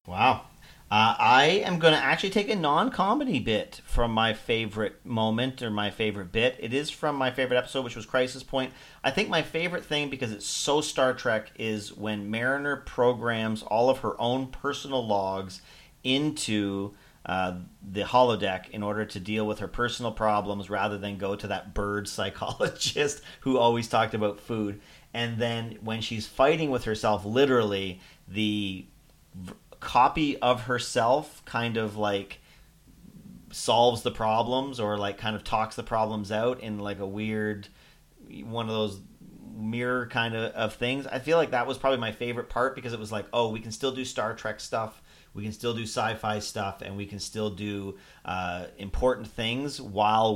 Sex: male